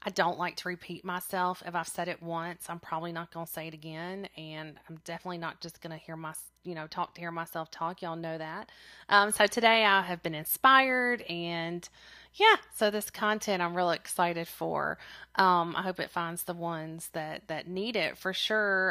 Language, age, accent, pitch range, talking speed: English, 30-49, American, 165-205 Hz, 215 wpm